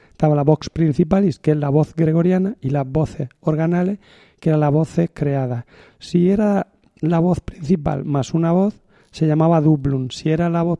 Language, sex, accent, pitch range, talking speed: Spanish, male, Spanish, 150-180 Hz, 185 wpm